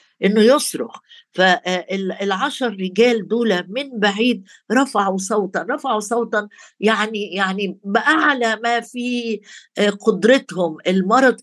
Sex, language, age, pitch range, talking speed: female, Arabic, 50-69, 190-235 Hz, 100 wpm